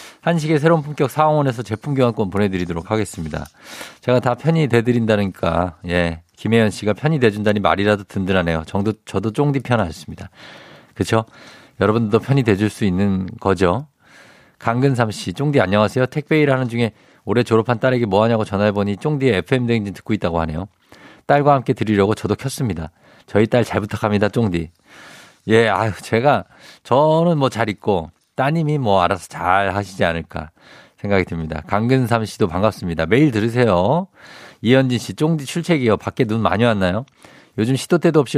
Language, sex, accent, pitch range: Korean, male, native, 100-135 Hz